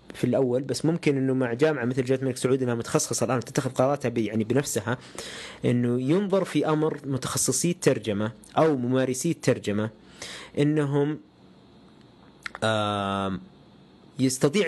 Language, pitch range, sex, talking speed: Arabic, 120-150 Hz, male, 120 wpm